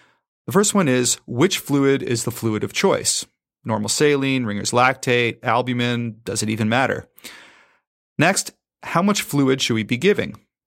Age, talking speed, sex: 30-49, 155 wpm, male